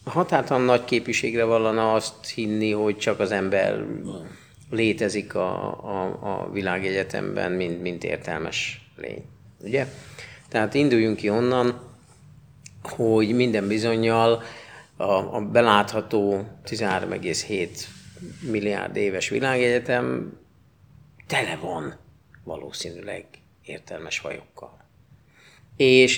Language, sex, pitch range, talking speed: Hungarian, male, 105-135 Hz, 90 wpm